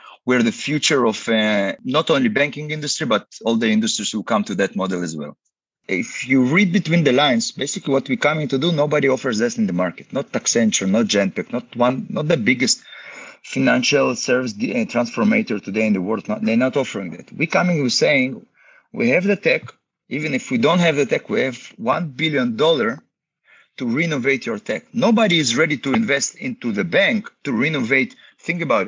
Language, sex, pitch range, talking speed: English, male, 135-215 Hz, 195 wpm